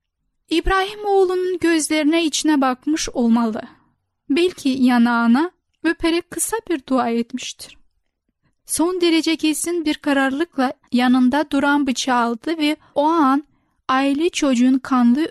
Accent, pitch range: native, 250-305 Hz